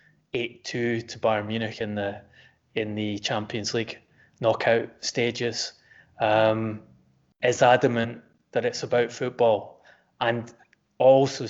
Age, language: 20-39, English